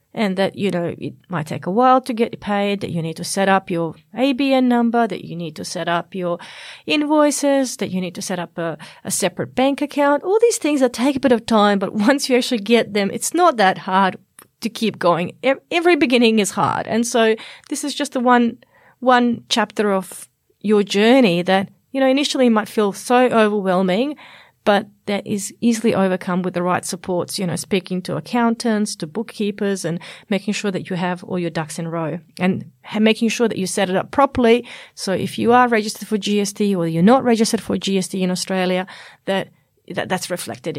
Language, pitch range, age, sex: English, 185-255 Hz, 30-49, female